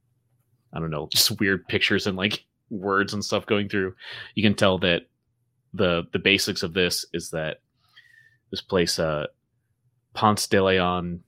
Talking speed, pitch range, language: 160 wpm, 90-120 Hz, English